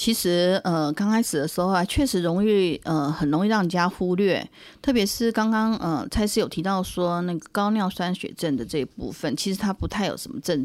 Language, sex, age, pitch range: Chinese, female, 30-49, 175-225 Hz